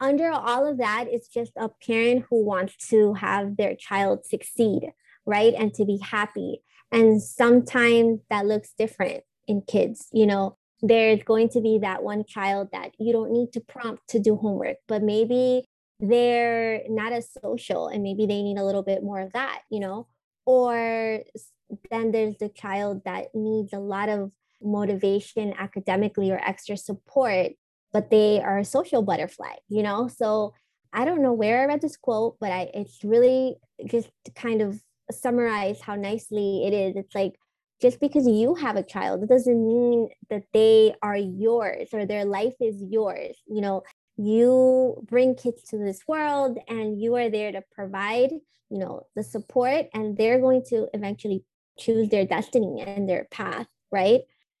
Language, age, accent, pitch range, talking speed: English, 20-39, American, 205-240 Hz, 175 wpm